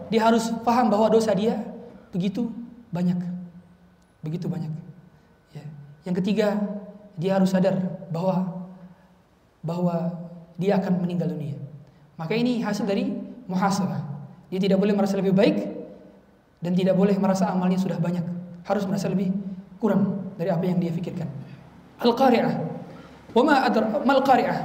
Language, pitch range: Indonesian, 185-260 Hz